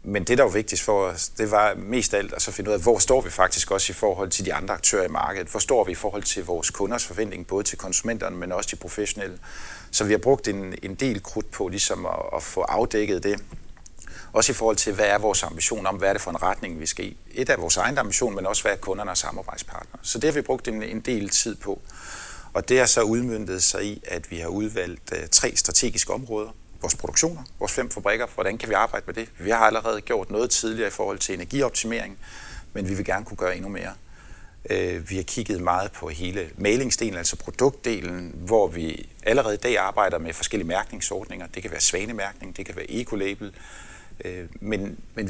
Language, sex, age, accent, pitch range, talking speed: Danish, male, 30-49, native, 95-110 Hz, 225 wpm